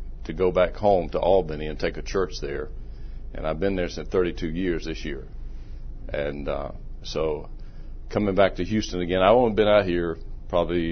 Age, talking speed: 40-59, 190 wpm